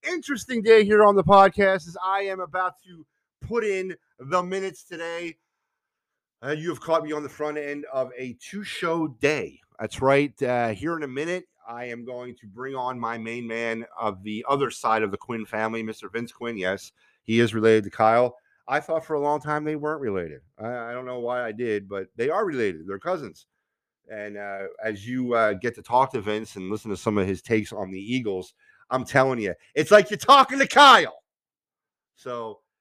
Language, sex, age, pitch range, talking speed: English, male, 40-59, 115-180 Hz, 210 wpm